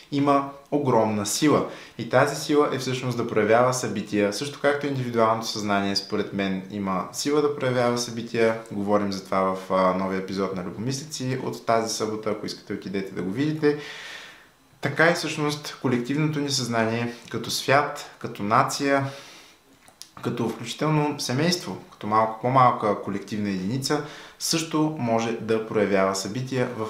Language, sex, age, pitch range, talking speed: Bulgarian, male, 20-39, 105-135 Hz, 140 wpm